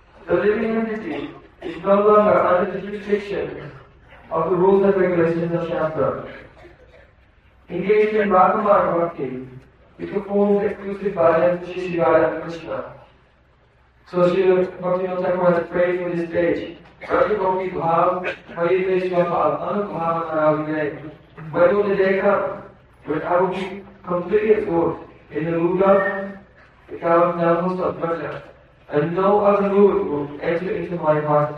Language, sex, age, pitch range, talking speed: Hindi, male, 40-59, 160-195 Hz, 140 wpm